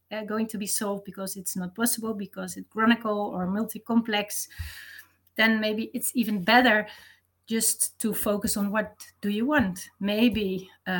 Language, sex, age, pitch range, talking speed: English, female, 30-49, 205-235 Hz, 155 wpm